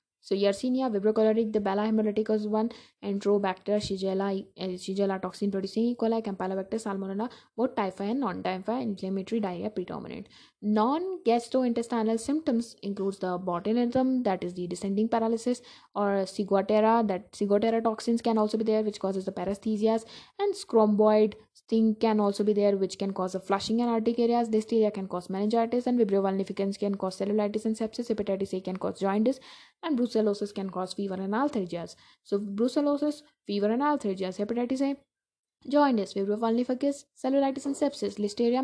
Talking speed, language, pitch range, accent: 150 wpm, English, 195-235 Hz, Indian